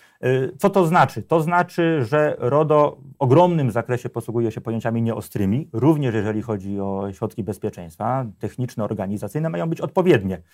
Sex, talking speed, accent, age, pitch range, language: male, 140 wpm, native, 30-49, 100-130 Hz, Polish